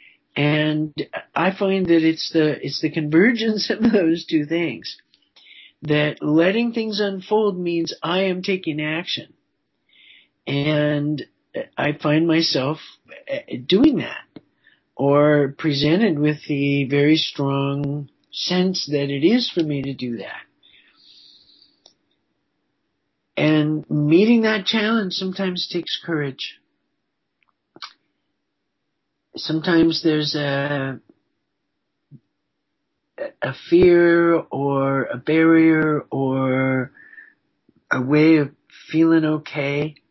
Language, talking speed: English, 95 wpm